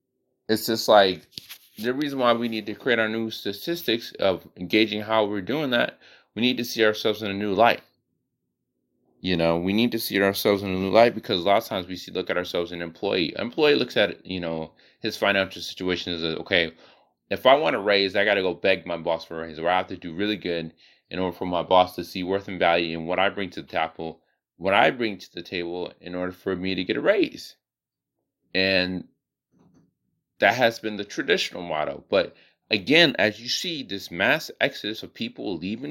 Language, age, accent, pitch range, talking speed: English, 30-49, American, 90-115 Hz, 225 wpm